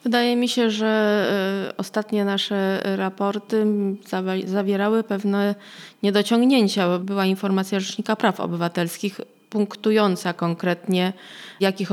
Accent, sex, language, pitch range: native, female, Polish, 165-195 Hz